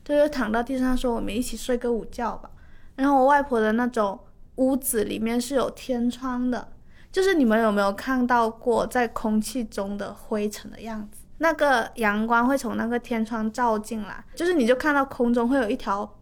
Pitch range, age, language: 225-260 Hz, 20-39, Chinese